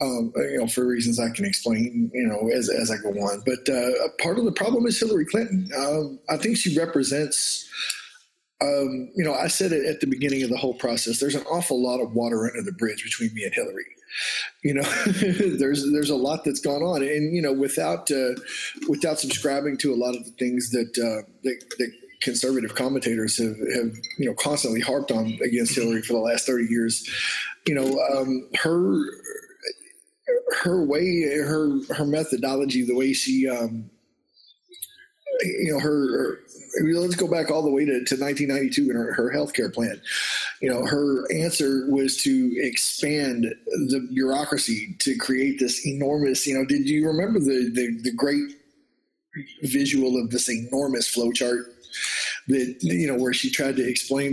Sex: male